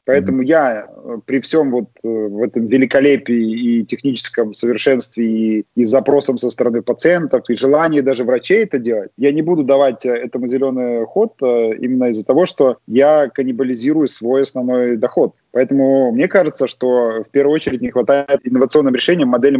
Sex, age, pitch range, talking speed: male, 20-39, 115-135 Hz, 155 wpm